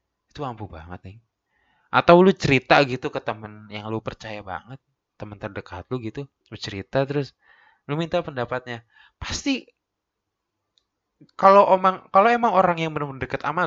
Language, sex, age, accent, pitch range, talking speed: Indonesian, male, 20-39, native, 130-190 Hz, 145 wpm